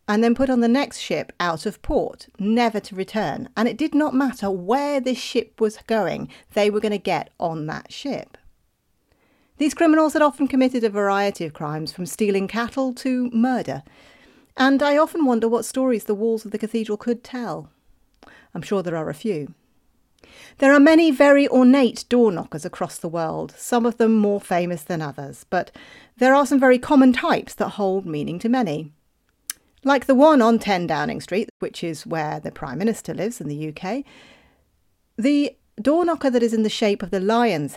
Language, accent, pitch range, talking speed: English, British, 180-255 Hz, 190 wpm